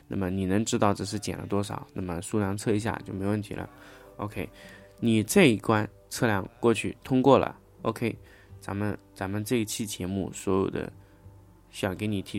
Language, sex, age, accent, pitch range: Chinese, male, 20-39, native, 90-110 Hz